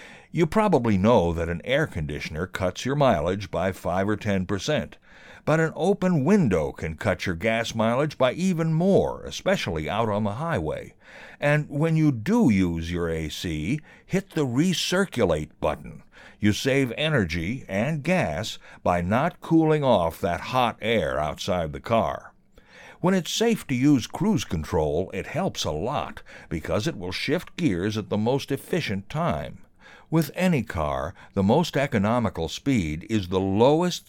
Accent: American